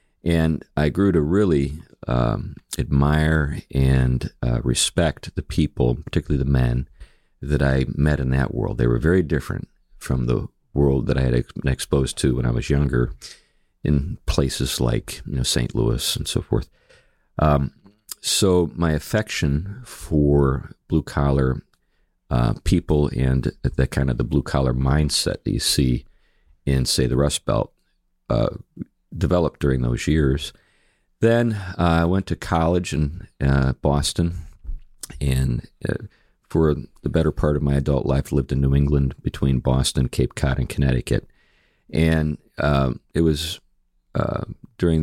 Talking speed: 150 wpm